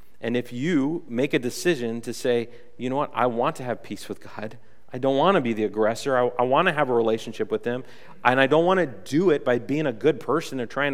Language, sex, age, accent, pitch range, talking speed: English, male, 40-59, American, 110-145 Hz, 265 wpm